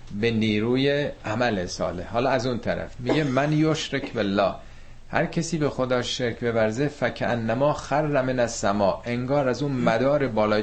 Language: Persian